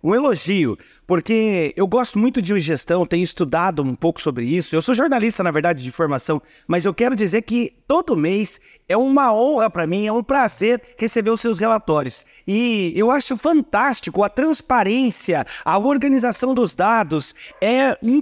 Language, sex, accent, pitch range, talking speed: Portuguese, male, Brazilian, 185-250 Hz, 170 wpm